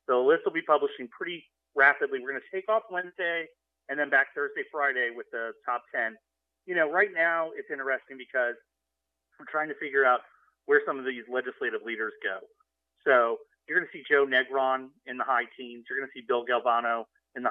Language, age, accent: English, 30-49, American